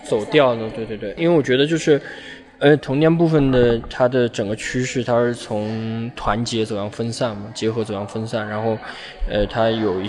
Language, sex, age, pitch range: Chinese, male, 20-39, 110-125 Hz